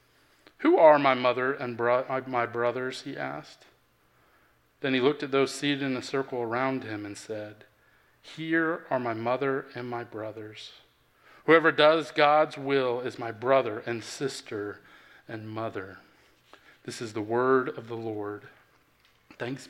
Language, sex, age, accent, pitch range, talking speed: English, male, 40-59, American, 120-160 Hz, 150 wpm